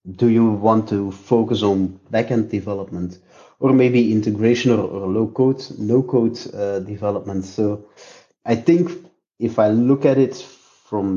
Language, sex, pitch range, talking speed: English, male, 95-115 Hz, 140 wpm